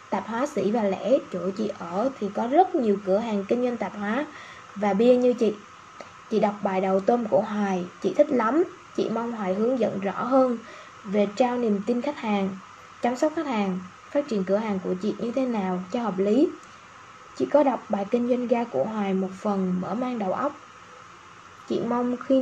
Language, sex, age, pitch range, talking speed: Vietnamese, female, 10-29, 205-265 Hz, 210 wpm